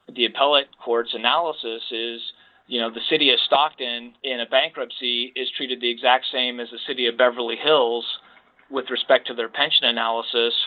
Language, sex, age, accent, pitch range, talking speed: English, male, 40-59, American, 115-125 Hz, 175 wpm